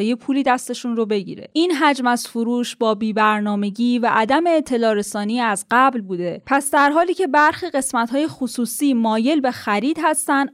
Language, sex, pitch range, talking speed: Persian, female, 215-270 Hz, 165 wpm